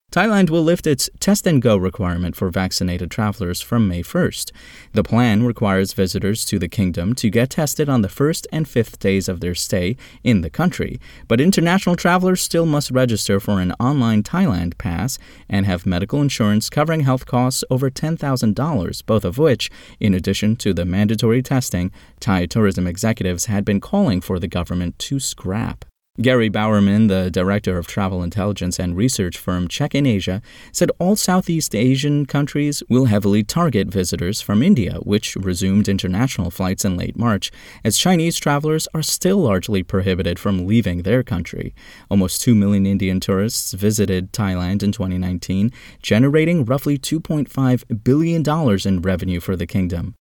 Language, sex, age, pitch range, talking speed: English, male, 30-49, 95-135 Hz, 160 wpm